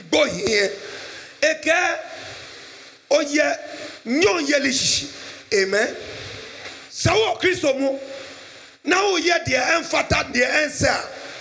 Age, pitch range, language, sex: 50-69, 285-355 Hz, English, male